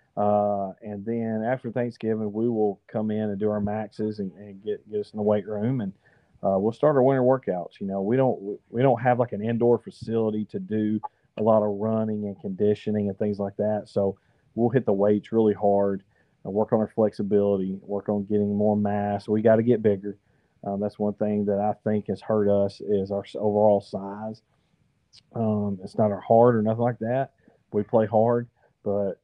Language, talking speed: English, 205 wpm